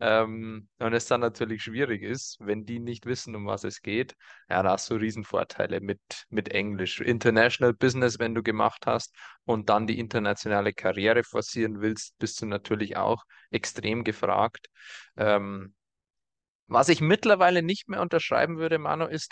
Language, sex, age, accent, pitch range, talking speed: German, male, 20-39, German, 110-135 Hz, 160 wpm